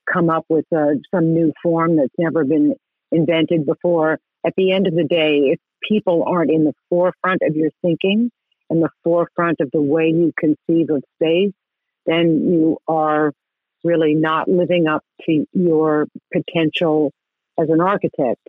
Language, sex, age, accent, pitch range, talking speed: English, female, 50-69, American, 155-180 Hz, 160 wpm